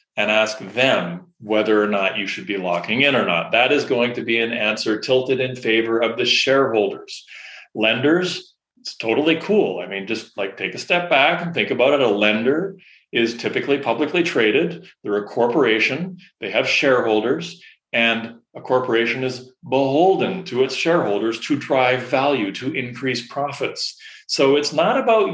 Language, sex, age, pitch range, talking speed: English, male, 40-59, 115-170 Hz, 170 wpm